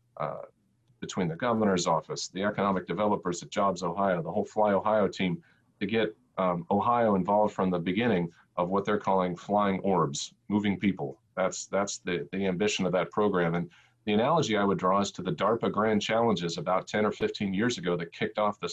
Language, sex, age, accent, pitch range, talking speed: English, male, 40-59, American, 90-105 Hz, 200 wpm